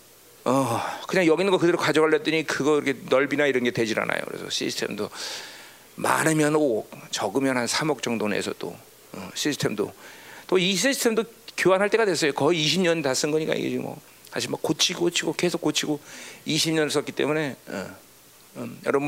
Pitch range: 140-200 Hz